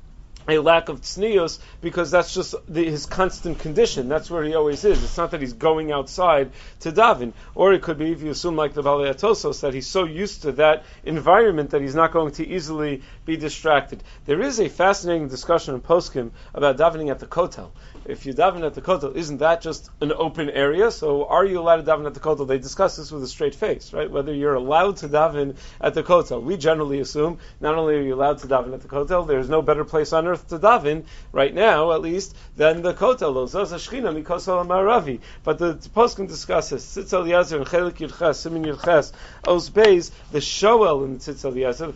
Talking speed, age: 195 wpm, 40-59